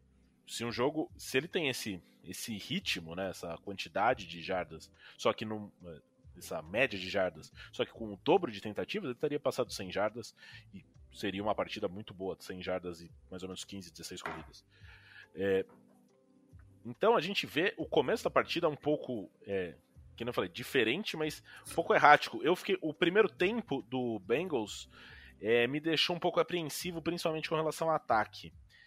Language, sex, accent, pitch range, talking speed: Portuguese, male, Brazilian, 100-160 Hz, 180 wpm